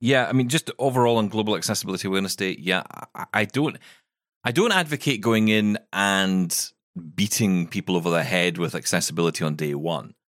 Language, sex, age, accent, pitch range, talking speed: English, male, 30-49, British, 80-115 Hz, 175 wpm